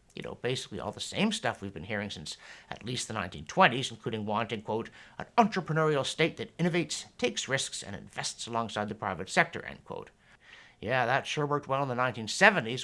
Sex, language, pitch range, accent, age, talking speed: male, English, 115-180 Hz, American, 60-79, 190 wpm